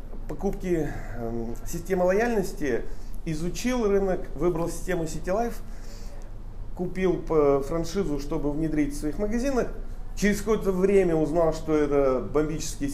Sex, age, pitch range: male, 40-59, 120-175 Hz